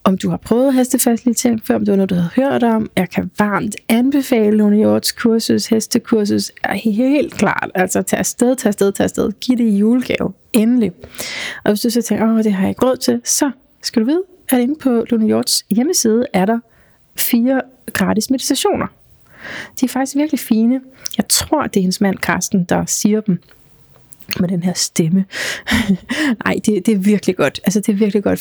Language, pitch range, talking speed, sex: Danish, 200-250 Hz, 200 wpm, female